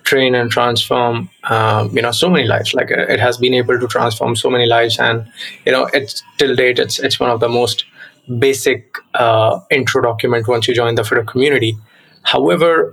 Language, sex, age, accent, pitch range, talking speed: English, male, 20-39, Indian, 115-135 Hz, 190 wpm